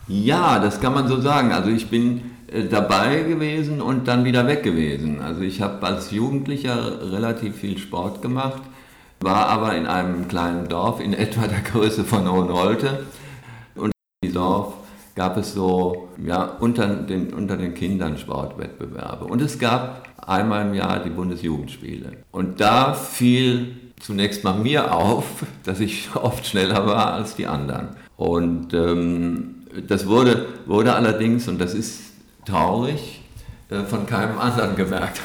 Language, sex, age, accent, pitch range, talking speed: German, male, 50-69, German, 95-120 Hz, 150 wpm